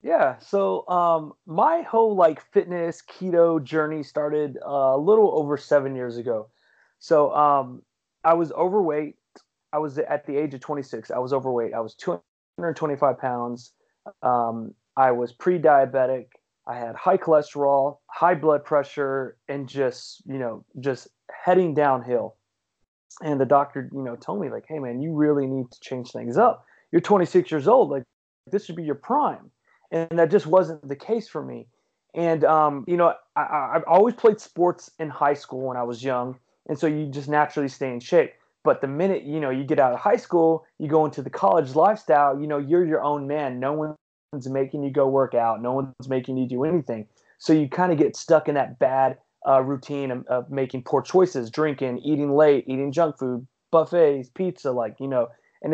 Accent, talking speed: American, 195 wpm